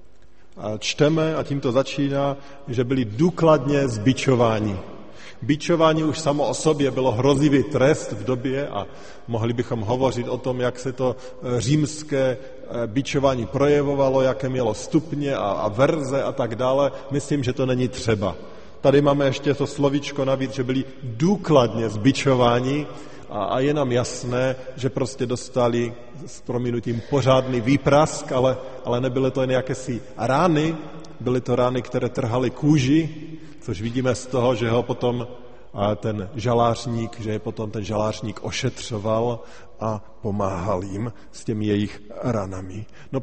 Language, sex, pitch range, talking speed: Slovak, male, 115-140 Hz, 140 wpm